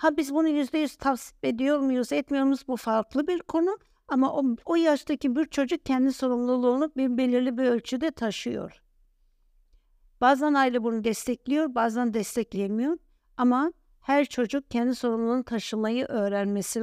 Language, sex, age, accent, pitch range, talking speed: Turkish, female, 60-79, native, 240-285 Hz, 140 wpm